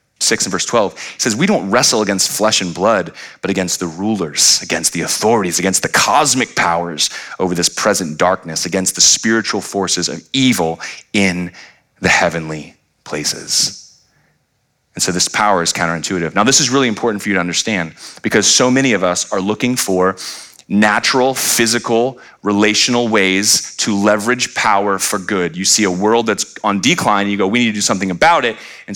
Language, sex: English, male